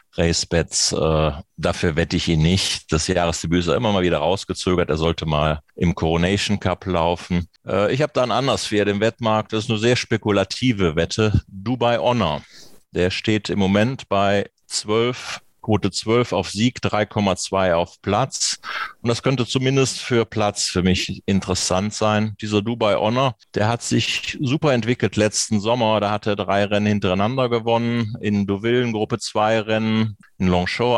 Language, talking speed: German, 165 wpm